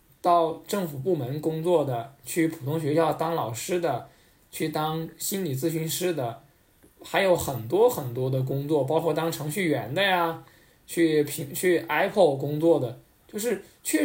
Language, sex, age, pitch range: Chinese, male, 20-39, 130-170 Hz